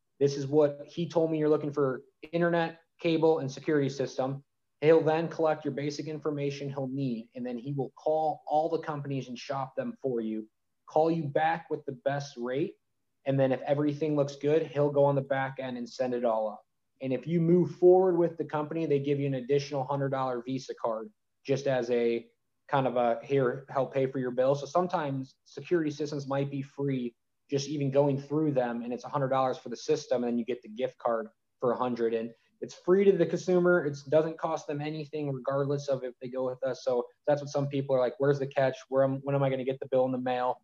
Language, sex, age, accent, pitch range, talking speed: English, male, 20-39, American, 125-150 Hz, 235 wpm